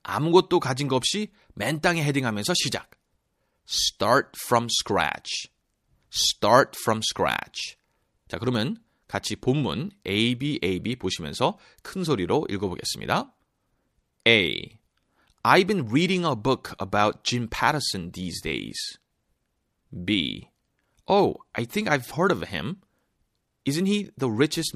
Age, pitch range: 30-49, 110-155 Hz